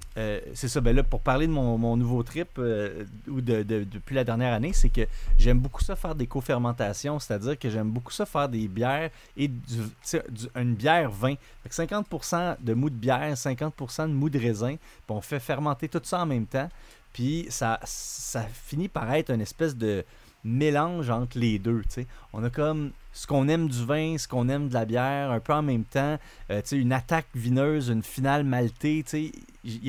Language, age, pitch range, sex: French, 30-49, 115-150 Hz, male